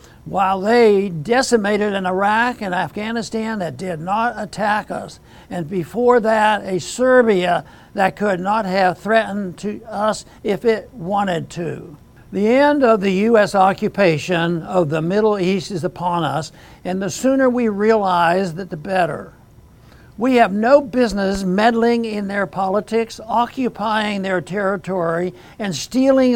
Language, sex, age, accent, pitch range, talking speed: English, male, 60-79, American, 185-225 Hz, 140 wpm